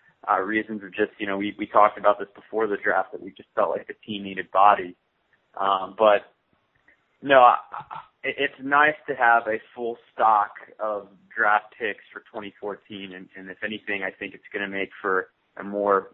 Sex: male